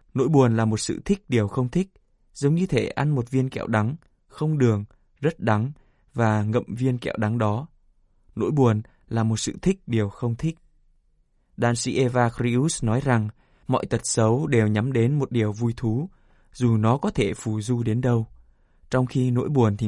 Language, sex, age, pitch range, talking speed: Vietnamese, male, 20-39, 110-135 Hz, 195 wpm